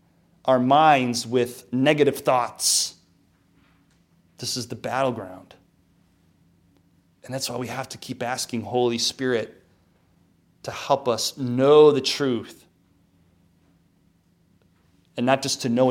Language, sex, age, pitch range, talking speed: English, male, 30-49, 115-180 Hz, 115 wpm